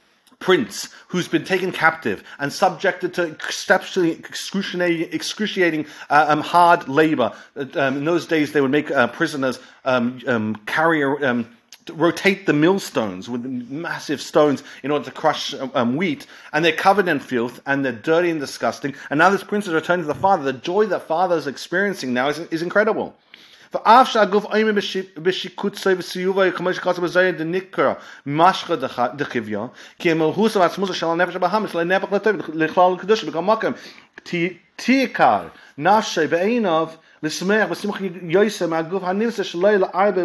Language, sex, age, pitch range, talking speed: English, male, 40-59, 155-195 Hz, 110 wpm